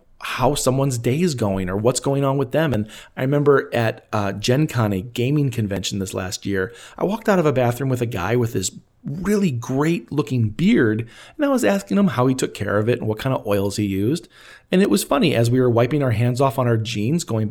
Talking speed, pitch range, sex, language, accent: 245 wpm, 105-145 Hz, male, English, American